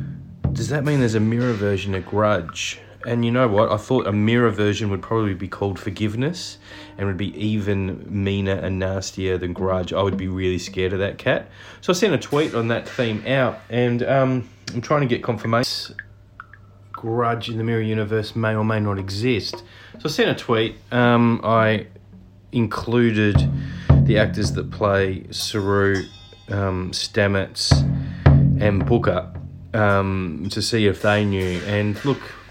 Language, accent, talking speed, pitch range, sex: English, Australian, 170 wpm, 95-120 Hz, male